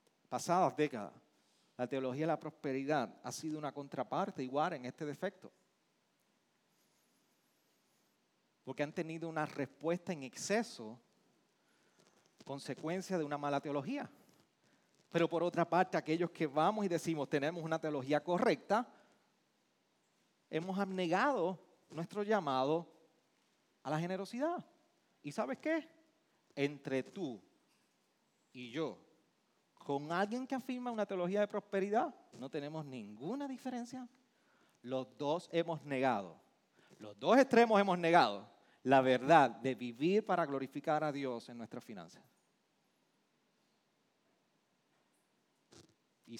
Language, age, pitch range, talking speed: Spanish, 40-59, 140-195 Hz, 115 wpm